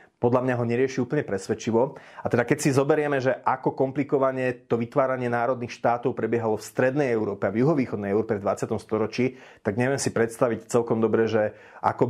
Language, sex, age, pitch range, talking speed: Slovak, male, 30-49, 105-125 Hz, 185 wpm